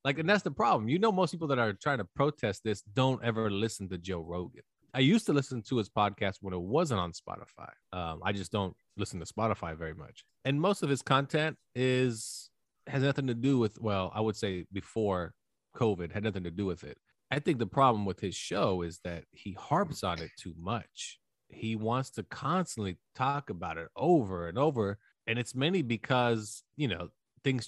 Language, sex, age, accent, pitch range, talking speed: English, male, 30-49, American, 100-145 Hz, 210 wpm